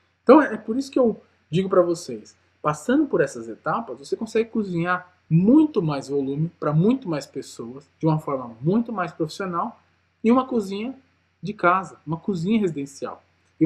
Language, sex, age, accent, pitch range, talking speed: Portuguese, male, 20-39, Brazilian, 145-210 Hz, 165 wpm